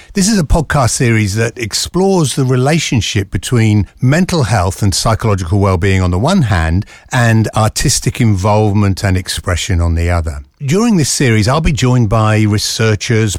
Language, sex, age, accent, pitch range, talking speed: English, male, 60-79, British, 95-125 Hz, 155 wpm